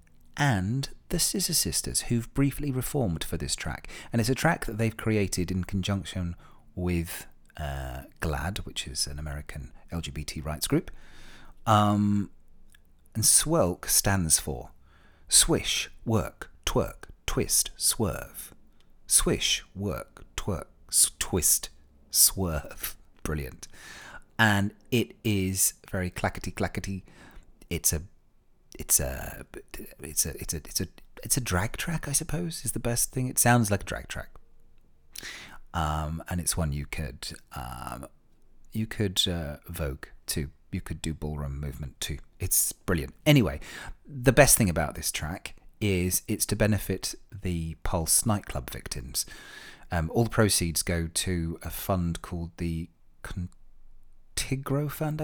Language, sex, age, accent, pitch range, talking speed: English, male, 40-59, British, 80-110 Hz, 135 wpm